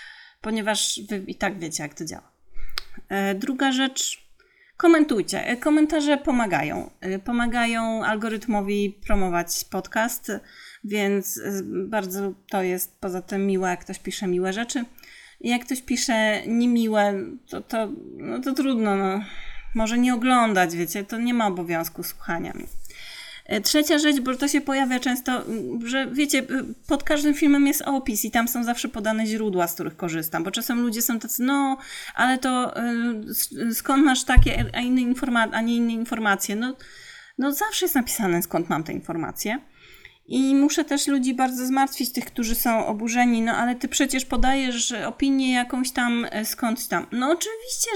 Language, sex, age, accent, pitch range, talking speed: Polish, female, 30-49, native, 210-270 Hz, 155 wpm